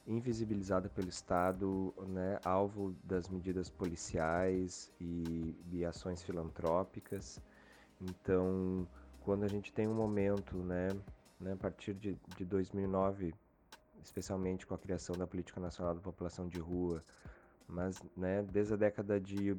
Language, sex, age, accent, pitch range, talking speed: Portuguese, male, 20-39, Brazilian, 85-100 Hz, 130 wpm